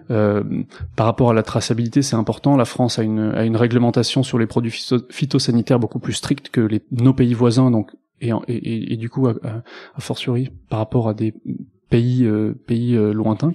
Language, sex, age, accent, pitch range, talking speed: French, male, 20-39, French, 115-130 Hz, 205 wpm